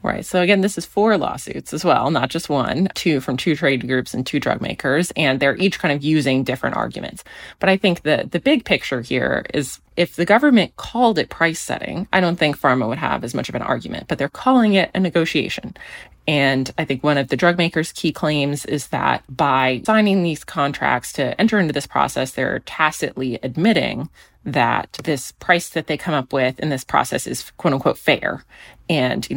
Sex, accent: female, American